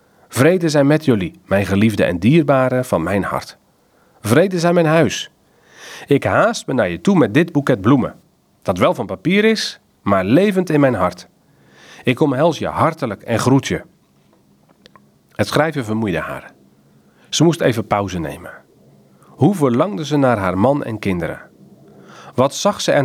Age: 40-59